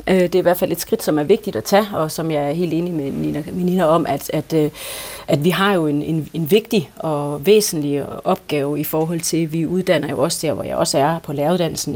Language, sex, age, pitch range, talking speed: Danish, female, 40-59, 155-195 Hz, 235 wpm